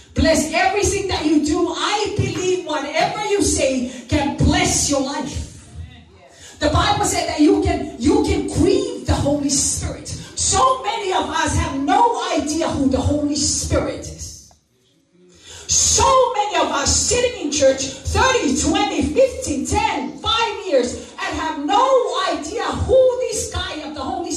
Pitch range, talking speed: 280-425 Hz, 150 wpm